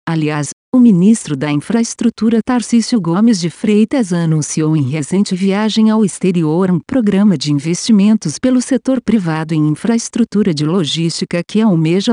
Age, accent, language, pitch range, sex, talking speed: 50-69, Brazilian, Portuguese, 155-220 Hz, female, 140 wpm